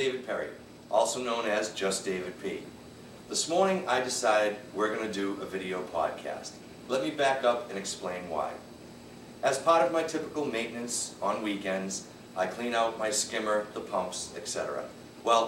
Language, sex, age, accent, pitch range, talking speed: English, male, 40-59, American, 100-135 Hz, 165 wpm